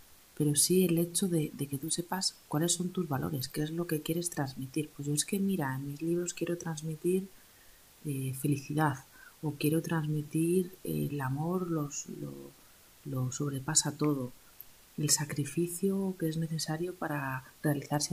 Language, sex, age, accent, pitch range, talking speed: Spanish, female, 30-49, Spanish, 135-170 Hz, 160 wpm